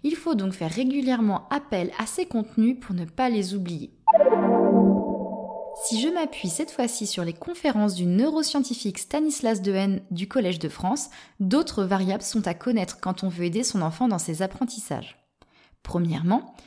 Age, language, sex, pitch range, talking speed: 20-39, French, female, 195-265 Hz, 160 wpm